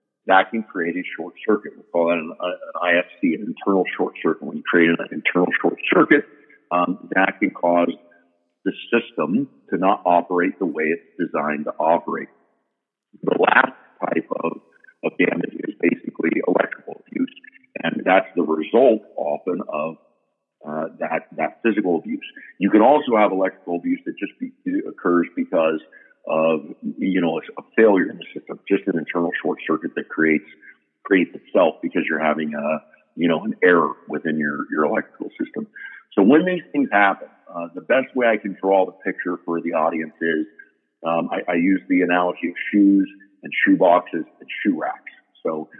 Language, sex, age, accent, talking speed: English, male, 50-69, American, 175 wpm